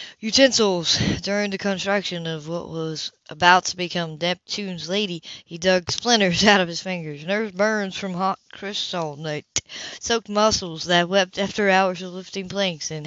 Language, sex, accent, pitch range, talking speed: English, female, American, 155-190 Hz, 160 wpm